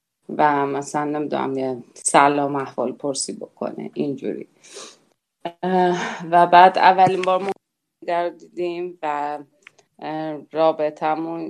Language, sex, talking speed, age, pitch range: Persian, female, 90 wpm, 30-49, 160-185 Hz